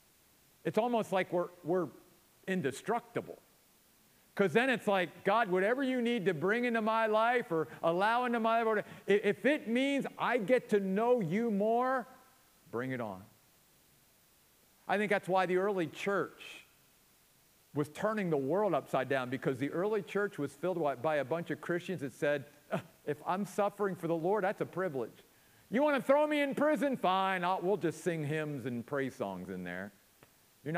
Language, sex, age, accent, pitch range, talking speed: English, male, 50-69, American, 150-230 Hz, 175 wpm